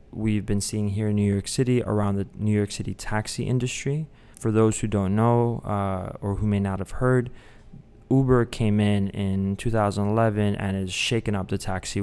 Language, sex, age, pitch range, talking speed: English, male, 20-39, 95-115 Hz, 190 wpm